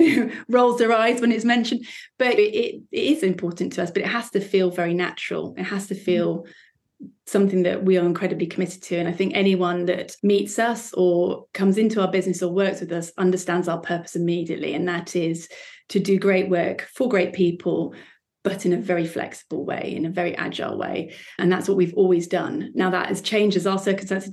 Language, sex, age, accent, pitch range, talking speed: English, female, 30-49, British, 175-200 Hz, 210 wpm